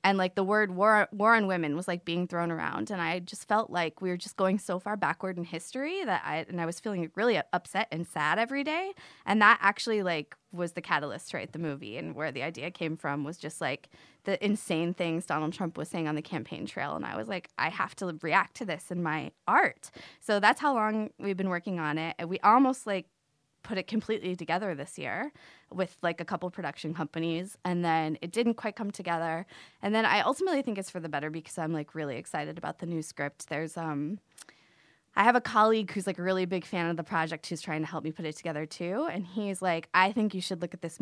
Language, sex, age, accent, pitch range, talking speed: English, female, 20-39, American, 160-200 Hz, 245 wpm